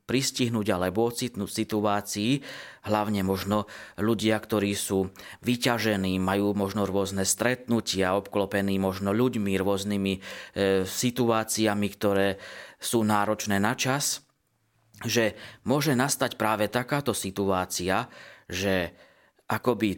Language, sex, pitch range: Slovak, male, 100-120 Hz